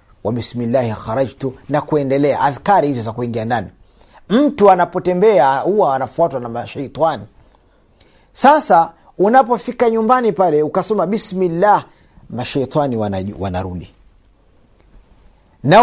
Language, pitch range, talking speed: Swahili, 135-220 Hz, 100 wpm